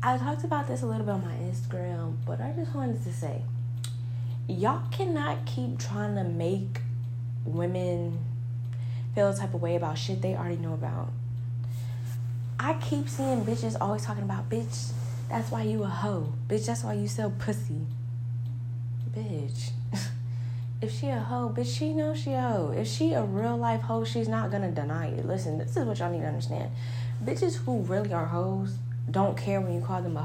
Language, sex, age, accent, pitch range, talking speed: English, female, 10-29, American, 110-120 Hz, 190 wpm